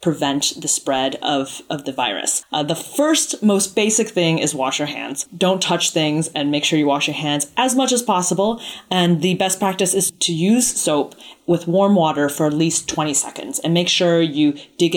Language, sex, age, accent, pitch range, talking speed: English, female, 30-49, American, 150-195 Hz, 210 wpm